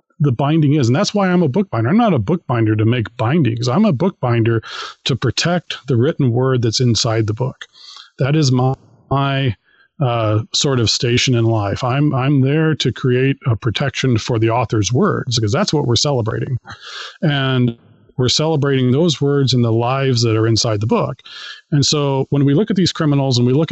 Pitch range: 120-155 Hz